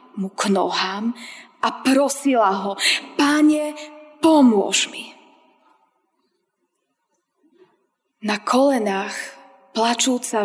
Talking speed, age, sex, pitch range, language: 70 wpm, 20-39, female, 210-285 Hz, Slovak